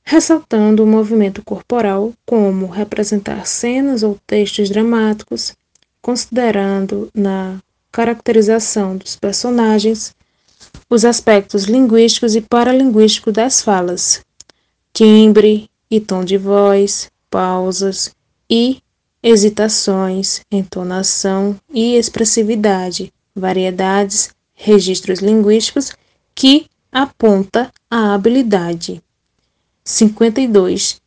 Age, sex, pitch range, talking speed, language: 10-29, female, 200-235 Hz, 80 wpm, Portuguese